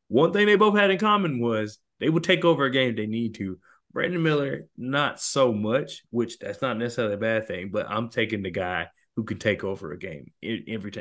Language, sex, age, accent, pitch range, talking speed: English, male, 20-39, American, 110-160 Hz, 230 wpm